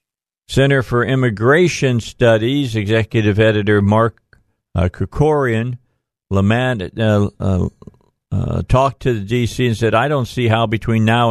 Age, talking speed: 50-69, 125 wpm